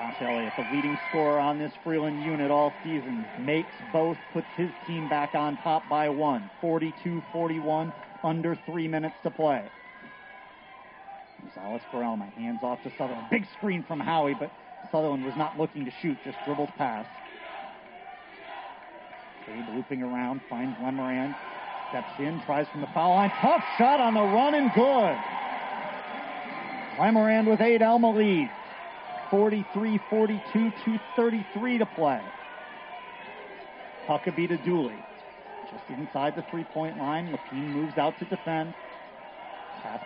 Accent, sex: American, male